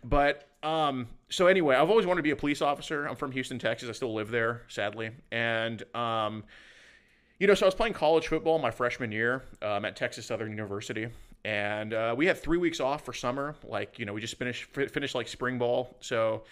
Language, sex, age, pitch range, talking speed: English, male, 30-49, 115-145 Hz, 215 wpm